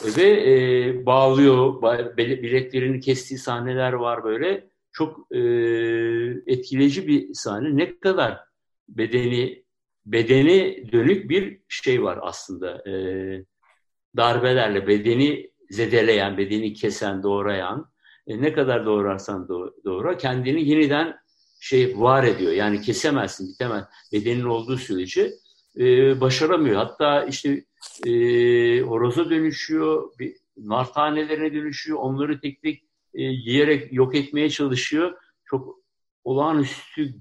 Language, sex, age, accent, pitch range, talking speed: Turkish, male, 60-79, native, 120-190 Hz, 105 wpm